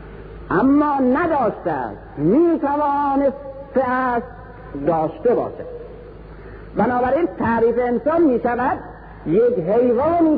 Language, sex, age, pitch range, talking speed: Persian, male, 50-69, 215-295 Hz, 80 wpm